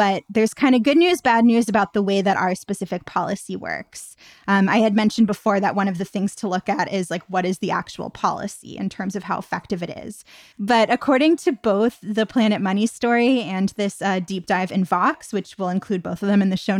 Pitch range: 190-230 Hz